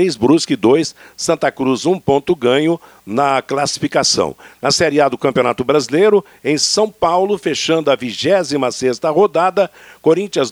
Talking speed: 135 wpm